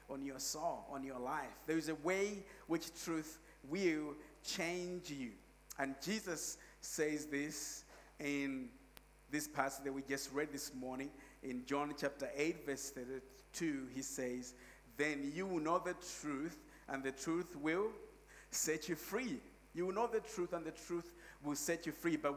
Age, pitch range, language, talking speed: 50-69, 140-175 Hz, English, 165 wpm